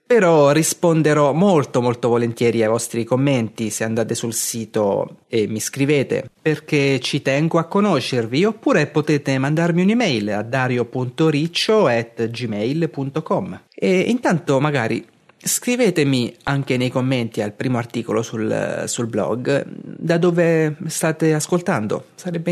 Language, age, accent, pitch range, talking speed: Italian, 30-49, native, 120-165 Hz, 115 wpm